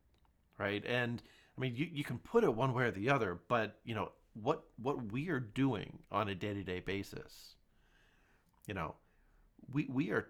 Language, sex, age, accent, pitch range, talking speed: English, male, 40-59, American, 95-125 Hz, 190 wpm